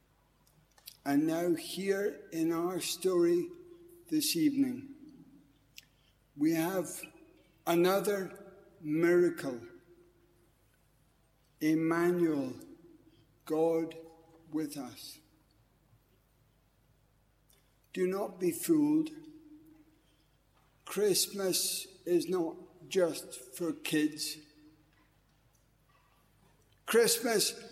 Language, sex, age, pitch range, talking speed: English, male, 60-79, 160-215 Hz, 60 wpm